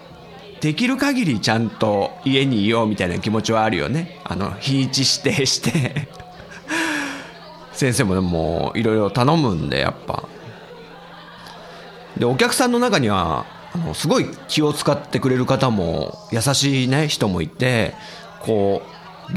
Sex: male